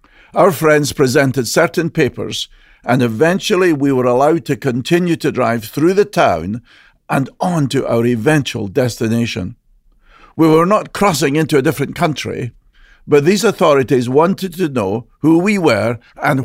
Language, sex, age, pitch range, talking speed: English, male, 50-69, 120-170 Hz, 150 wpm